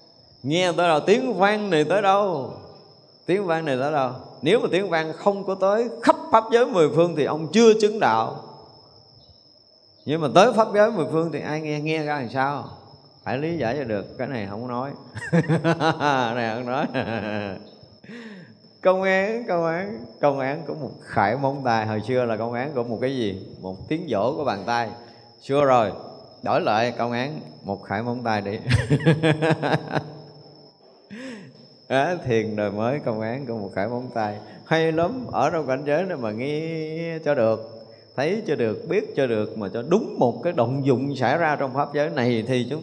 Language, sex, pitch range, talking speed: Vietnamese, male, 115-160 Hz, 190 wpm